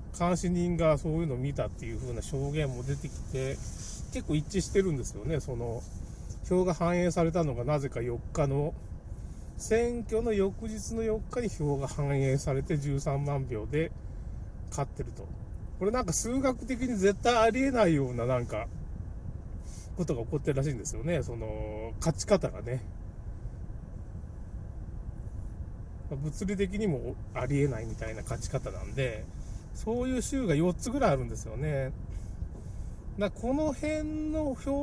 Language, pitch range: Japanese, 110-180 Hz